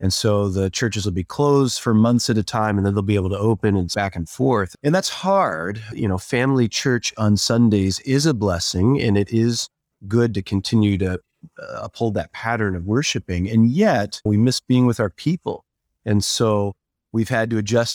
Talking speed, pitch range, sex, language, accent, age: 205 wpm, 100-130 Hz, male, English, American, 30-49